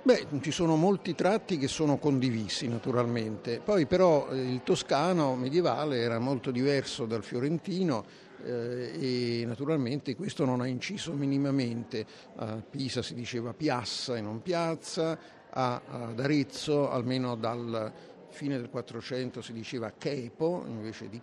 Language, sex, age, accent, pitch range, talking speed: Italian, male, 50-69, native, 120-155 Hz, 135 wpm